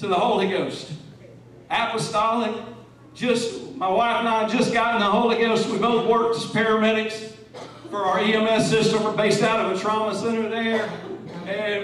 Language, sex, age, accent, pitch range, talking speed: English, male, 40-59, American, 200-230 Hz, 170 wpm